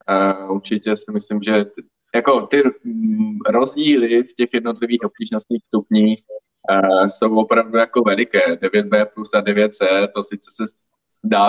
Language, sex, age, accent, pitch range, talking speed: Czech, male, 20-39, native, 100-115 Hz, 145 wpm